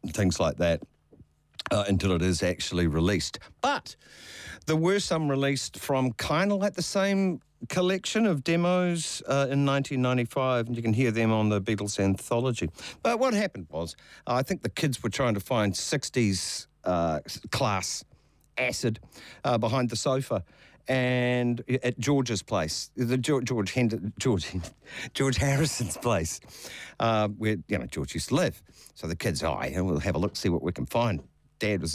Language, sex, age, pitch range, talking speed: English, male, 50-69, 95-140 Hz, 170 wpm